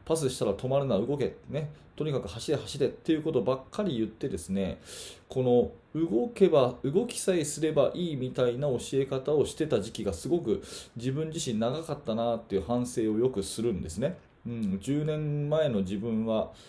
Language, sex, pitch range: Japanese, male, 115-165 Hz